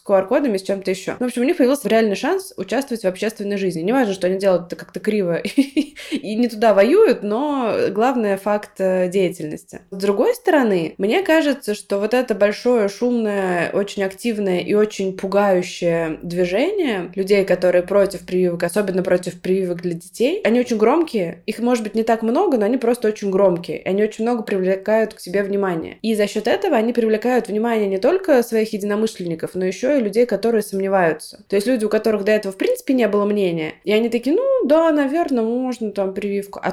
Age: 20-39